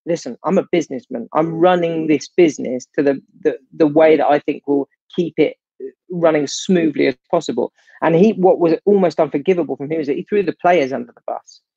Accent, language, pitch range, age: British, English, 145-185 Hz, 40-59